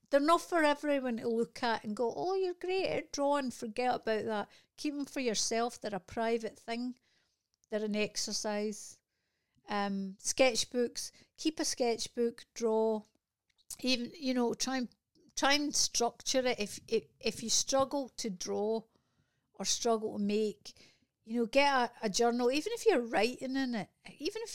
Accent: British